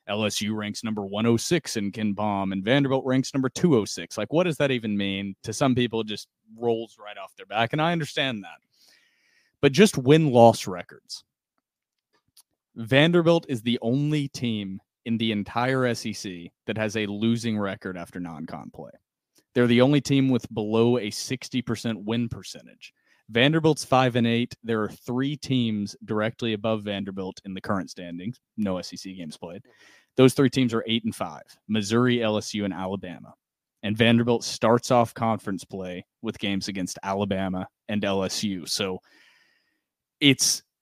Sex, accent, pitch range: male, American, 105-130 Hz